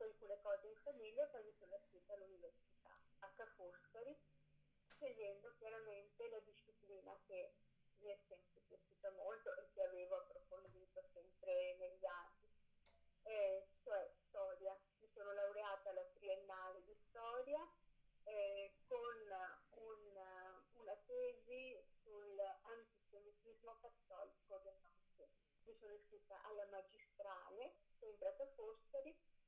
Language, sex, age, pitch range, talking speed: Italian, female, 30-49, 195-285 Hz, 110 wpm